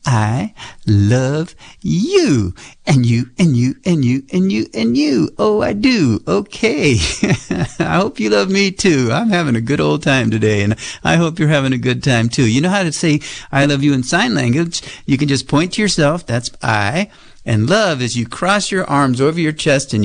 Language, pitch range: English, 115-175 Hz